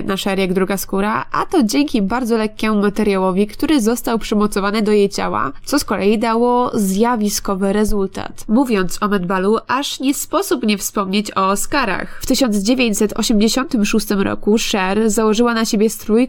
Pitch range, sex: 200-240 Hz, female